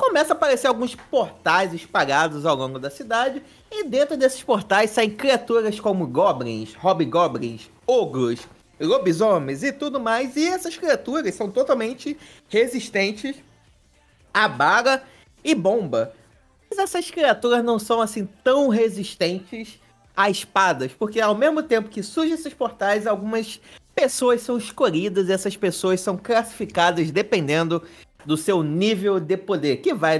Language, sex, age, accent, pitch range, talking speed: Portuguese, male, 30-49, Brazilian, 180-265 Hz, 140 wpm